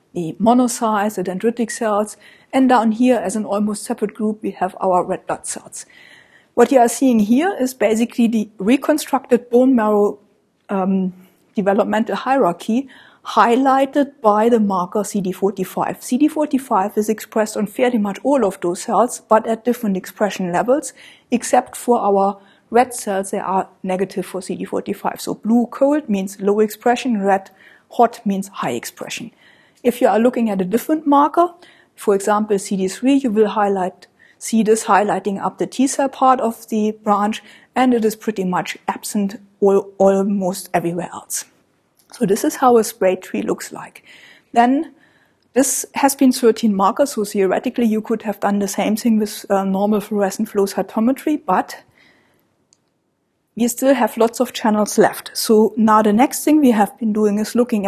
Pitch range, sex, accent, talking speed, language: 200-245 Hz, female, German, 160 wpm, English